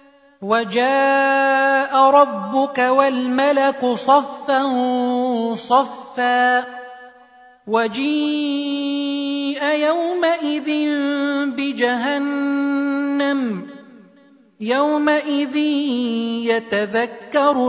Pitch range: 245-285 Hz